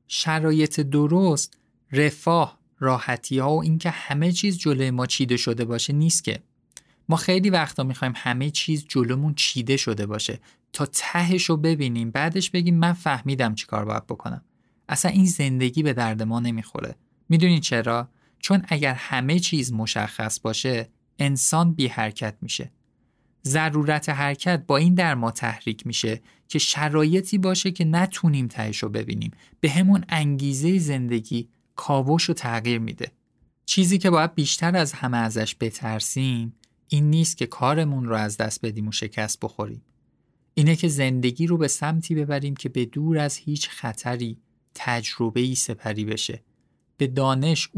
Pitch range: 115-160 Hz